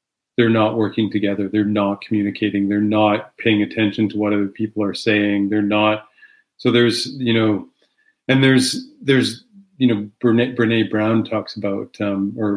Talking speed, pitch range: 165 wpm, 105-120 Hz